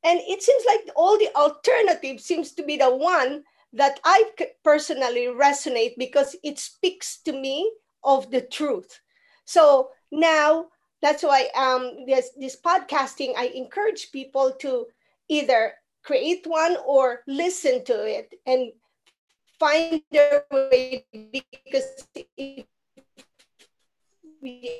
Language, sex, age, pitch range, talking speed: English, female, 40-59, 255-310 Hz, 120 wpm